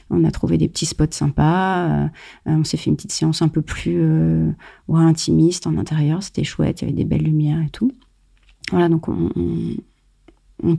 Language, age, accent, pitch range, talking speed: French, 30-49, French, 165-205 Hz, 190 wpm